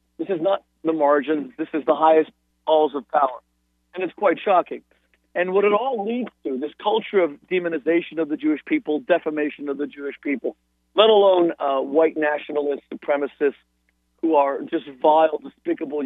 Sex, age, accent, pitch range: male, 50-69, American, 130-160 Hz